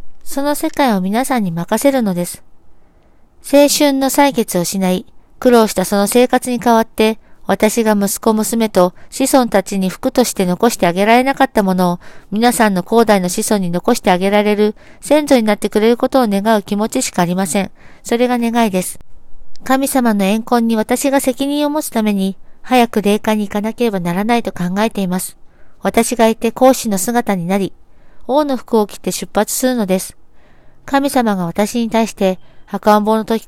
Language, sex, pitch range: Japanese, female, 200-250 Hz